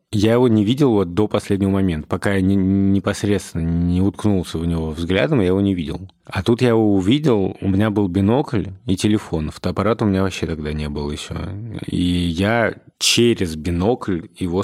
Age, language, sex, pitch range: 20-39, Russian, male, 85-105 Hz